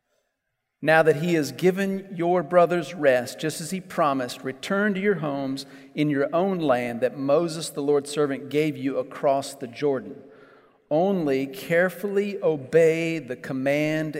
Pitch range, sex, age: 135-170 Hz, male, 40-59